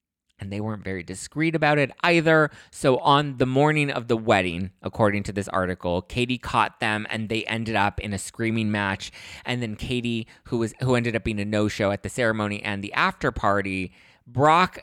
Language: English